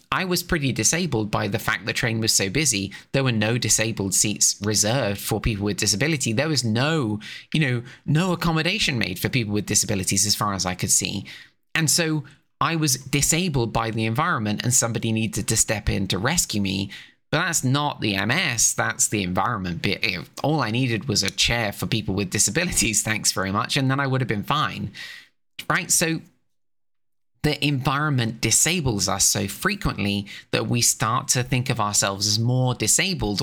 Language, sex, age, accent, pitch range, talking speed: English, male, 20-39, British, 105-150 Hz, 185 wpm